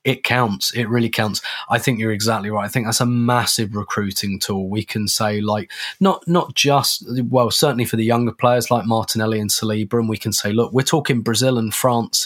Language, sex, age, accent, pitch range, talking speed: English, male, 20-39, British, 105-130 Hz, 215 wpm